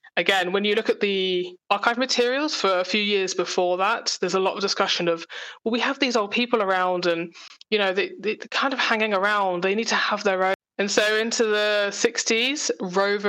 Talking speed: 215 wpm